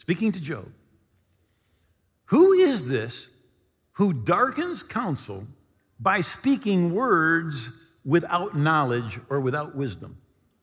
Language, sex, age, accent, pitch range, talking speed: English, male, 50-69, American, 140-220 Hz, 95 wpm